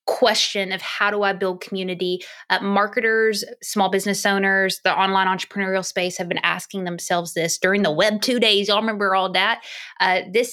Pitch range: 180-205 Hz